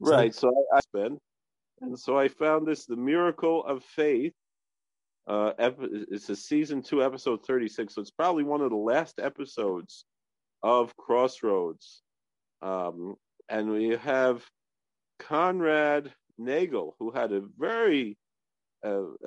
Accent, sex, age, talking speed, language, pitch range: American, male, 40-59, 130 wpm, English, 110-145 Hz